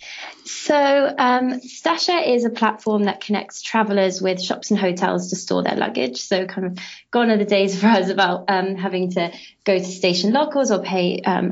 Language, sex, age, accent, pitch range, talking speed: English, female, 20-39, British, 185-220 Hz, 195 wpm